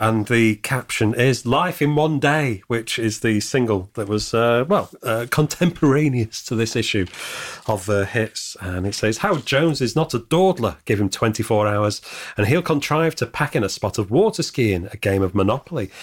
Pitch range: 105-145 Hz